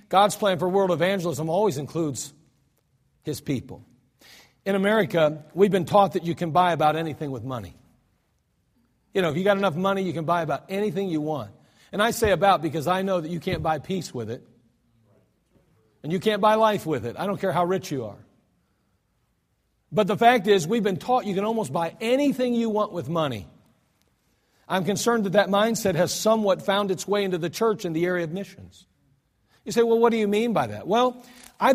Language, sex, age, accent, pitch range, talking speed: English, male, 50-69, American, 150-205 Hz, 205 wpm